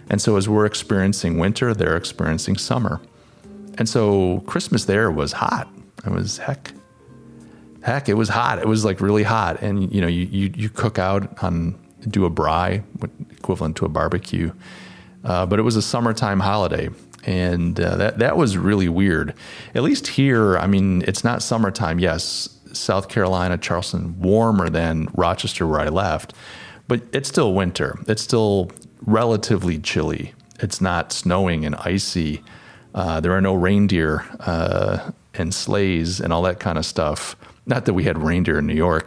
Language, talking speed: English, 170 wpm